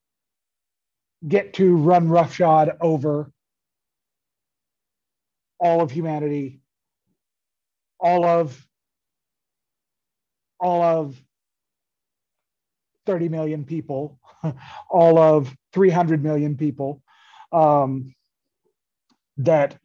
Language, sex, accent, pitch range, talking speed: English, male, American, 145-180 Hz, 65 wpm